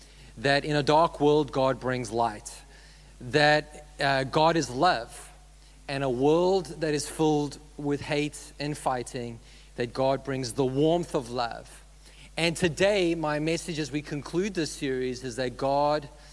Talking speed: 155 wpm